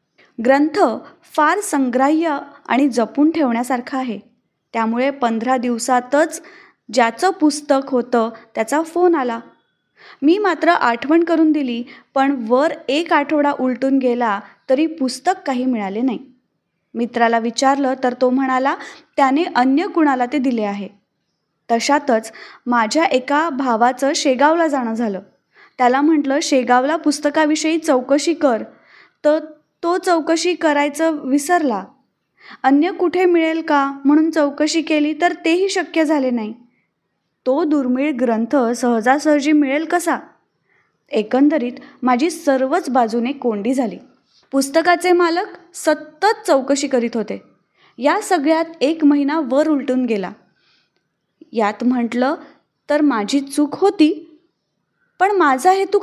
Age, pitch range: 20-39, 250-320 Hz